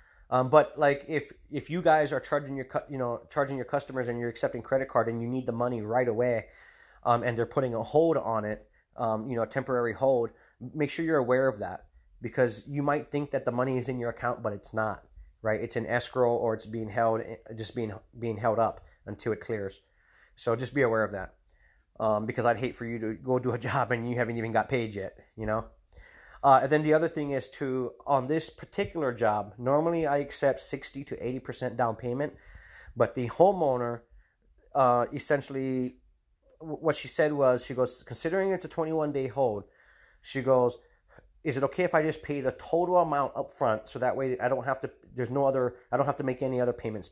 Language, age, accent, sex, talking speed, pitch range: English, 30-49, American, male, 220 wpm, 115-140 Hz